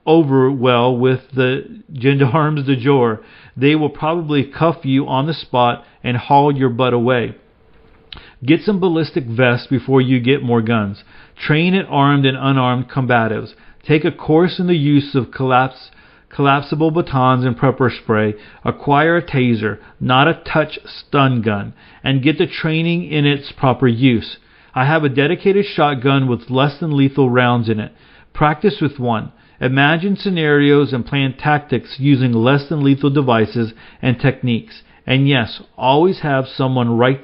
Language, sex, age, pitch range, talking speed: English, male, 40-59, 125-150 Hz, 160 wpm